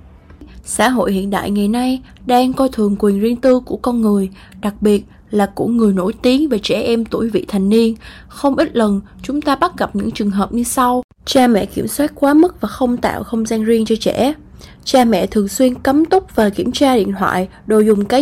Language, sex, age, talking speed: Vietnamese, female, 20-39, 225 wpm